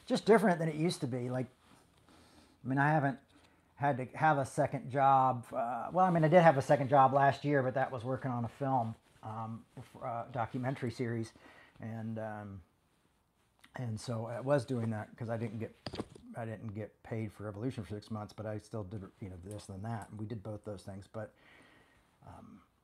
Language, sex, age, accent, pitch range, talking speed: English, male, 40-59, American, 115-150 Hz, 210 wpm